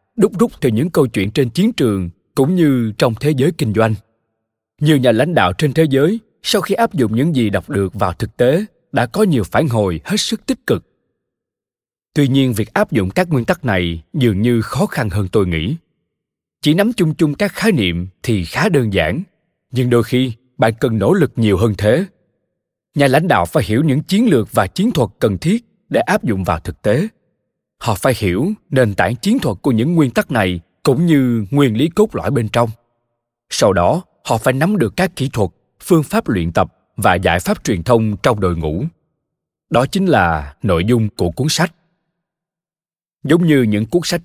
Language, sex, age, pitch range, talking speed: Vietnamese, male, 20-39, 110-170 Hz, 205 wpm